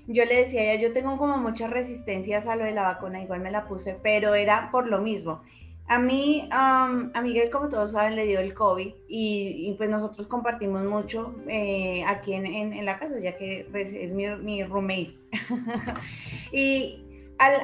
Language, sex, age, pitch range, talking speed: Spanish, female, 20-39, 200-235 Hz, 185 wpm